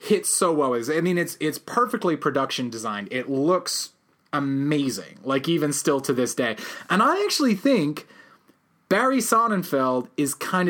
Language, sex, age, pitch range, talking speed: English, male, 30-49, 135-185 Hz, 155 wpm